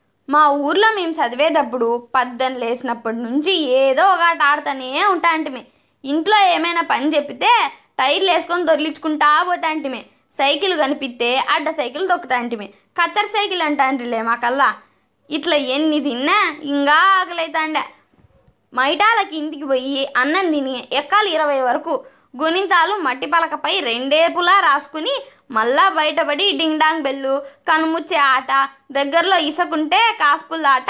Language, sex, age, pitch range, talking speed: Telugu, female, 20-39, 270-345 Hz, 110 wpm